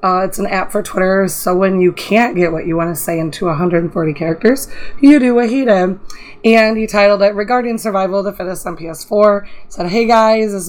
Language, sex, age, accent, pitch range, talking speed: English, female, 20-39, American, 180-215 Hz, 220 wpm